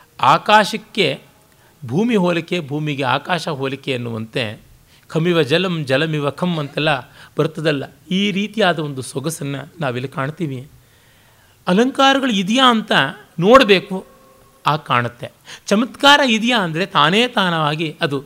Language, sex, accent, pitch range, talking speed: Kannada, male, native, 135-190 Hz, 100 wpm